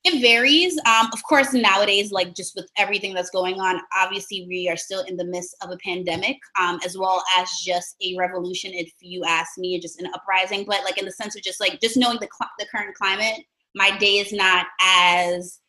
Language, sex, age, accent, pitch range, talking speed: English, female, 20-39, American, 180-220 Hz, 220 wpm